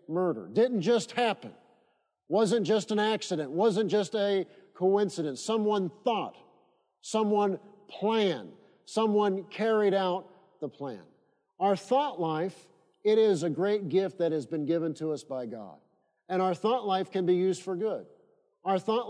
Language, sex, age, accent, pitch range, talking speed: English, male, 50-69, American, 185-220 Hz, 150 wpm